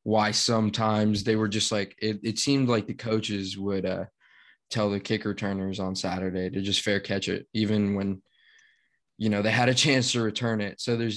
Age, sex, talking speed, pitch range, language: 20-39, male, 205 wpm, 100-110 Hz, English